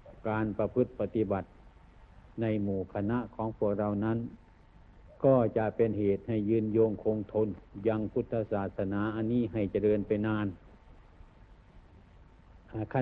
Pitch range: 95-115 Hz